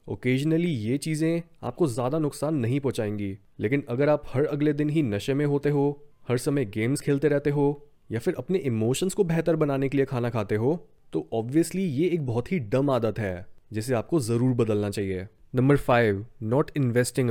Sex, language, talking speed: male, Hindi, 190 wpm